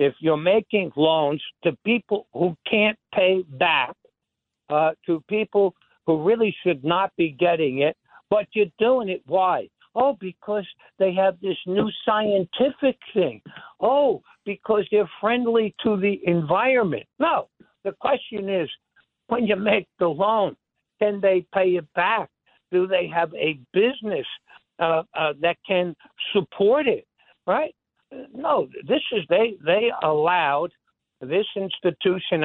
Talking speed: 140 wpm